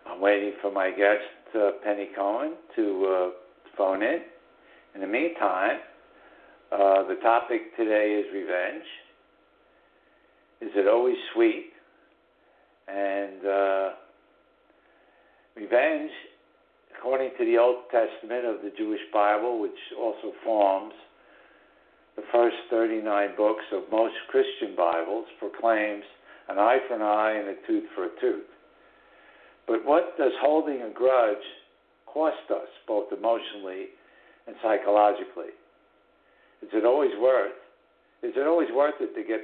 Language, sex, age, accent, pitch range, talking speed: English, male, 60-79, American, 100-150 Hz, 125 wpm